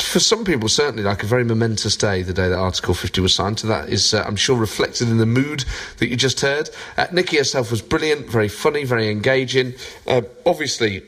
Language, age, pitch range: English, 30-49, 100-125 Hz